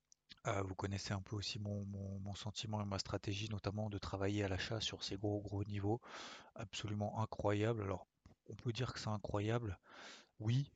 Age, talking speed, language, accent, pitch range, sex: 30-49, 185 wpm, French, French, 95-115 Hz, male